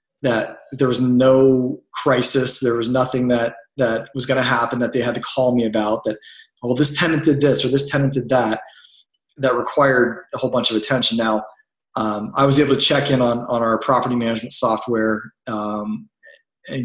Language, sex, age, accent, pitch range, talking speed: English, male, 30-49, American, 110-130 Hz, 195 wpm